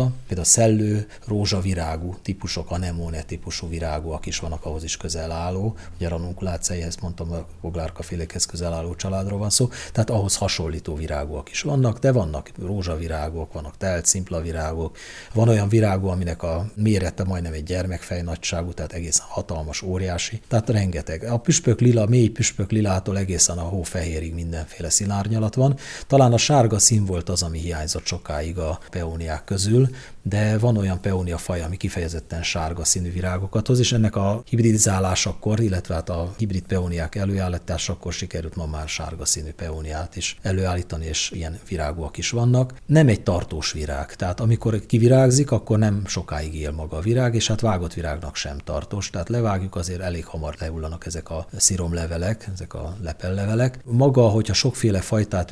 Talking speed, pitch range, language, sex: 160 wpm, 85-105 Hz, Hungarian, male